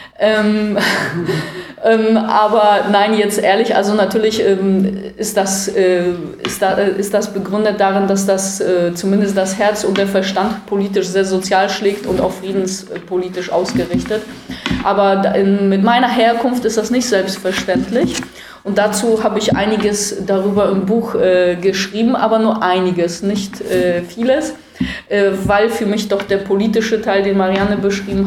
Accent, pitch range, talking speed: German, 190-210 Hz, 140 wpm